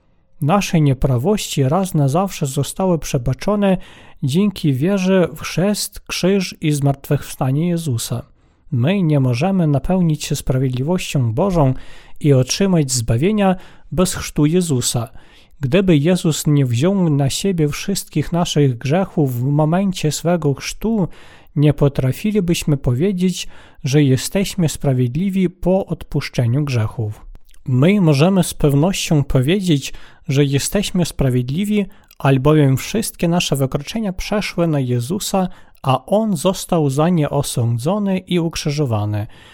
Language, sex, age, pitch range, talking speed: Polish, male, 40-59, 140-185 Hz, 110 wpm